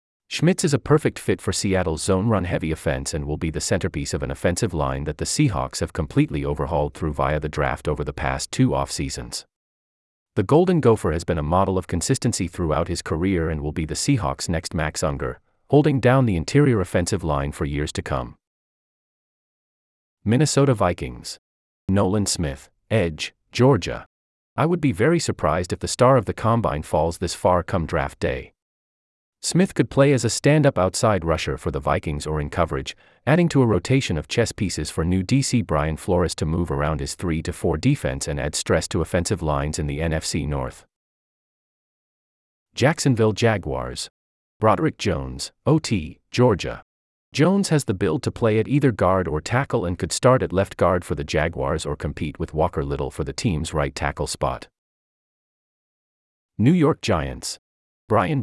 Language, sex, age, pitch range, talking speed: English, male, 30-49, 75-115 Hz, 175 wpm